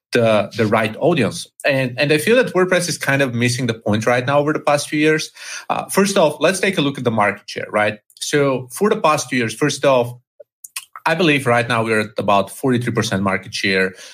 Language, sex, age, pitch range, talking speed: English, male, 30-49, 115-145 Hz, 225 wpm